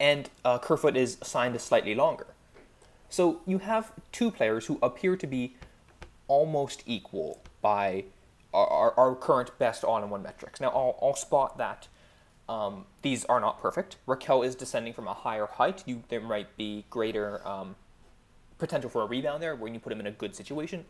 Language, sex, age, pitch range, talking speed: English, male, 20-39, 105-155 Hz, 180 wpm